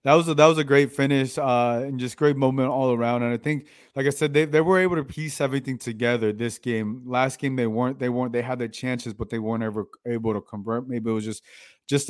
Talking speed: 265 wpm